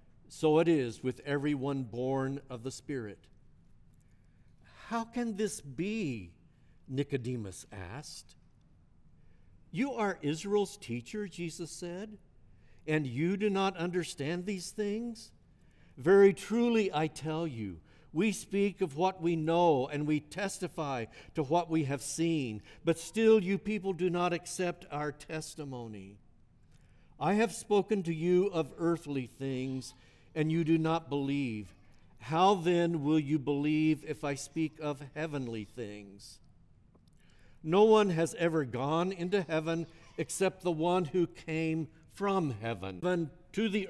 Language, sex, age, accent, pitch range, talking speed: English, male, 60-79, American, 140-185 Hz, 130 wpm